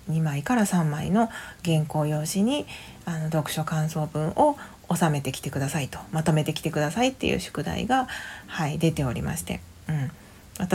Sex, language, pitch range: female, Japanese, 150-195 Hz